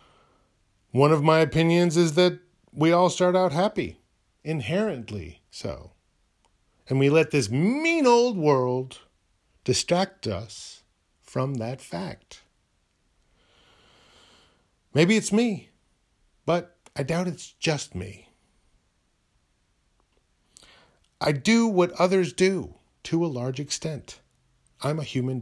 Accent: American